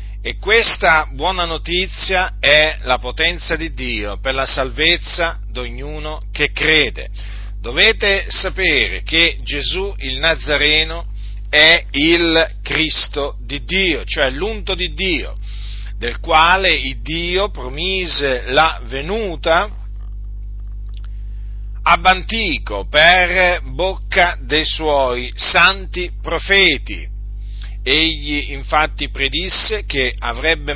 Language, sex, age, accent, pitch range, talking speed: Italian, male, 40-59, native, 100-165 Hz, 95 wpm